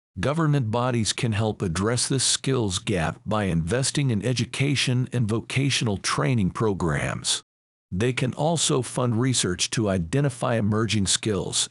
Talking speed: 130 wpm